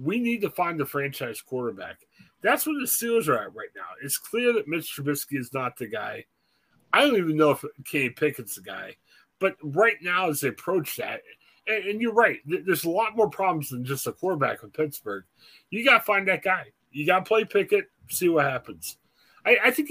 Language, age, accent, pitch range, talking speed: English, 30-49, American, 145-235 Hz, 215 wpm